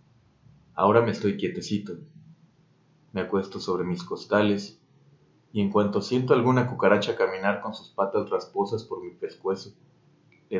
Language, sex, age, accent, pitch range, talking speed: Spanish, male, 40-59, Mexican, 95-130 Hz, 135 wpm